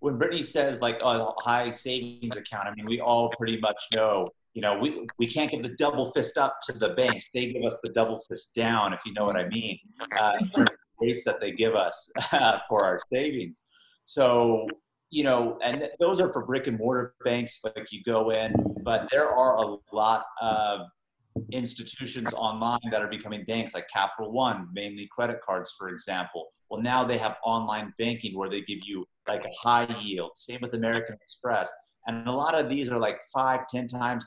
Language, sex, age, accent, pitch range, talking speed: English, male, 30-49, American, 110-125 Hz, 205 wpm